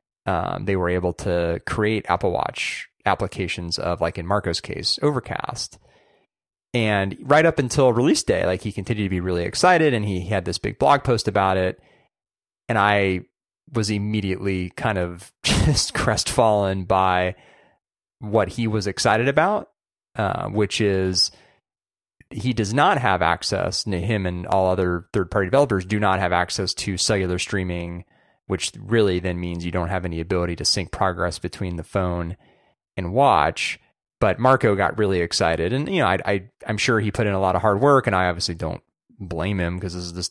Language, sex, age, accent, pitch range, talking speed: English, male, 30-49, American, 90-110 Hz, 175 wpm